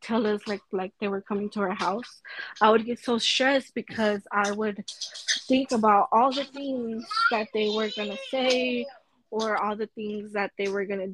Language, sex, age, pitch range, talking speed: Spanish, female, 20-39, 205-235 Hz, 195 wpm